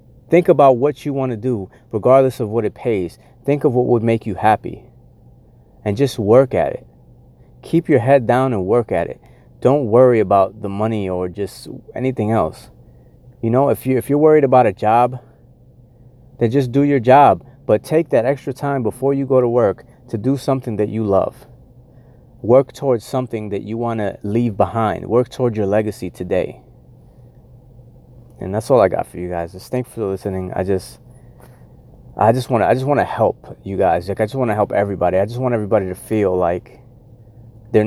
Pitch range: 100-125 Hz